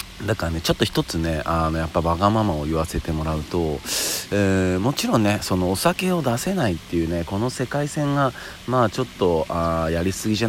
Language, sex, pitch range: Japanese, male, 85-125 Hz